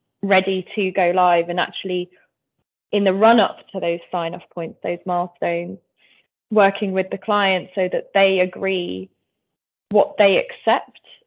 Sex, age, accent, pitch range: female, 20-39, British, 175-210 Hz